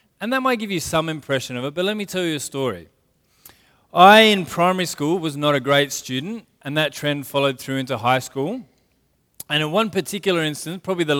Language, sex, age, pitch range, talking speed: English, male, 20-39, 130-160 Hz, 215 wpm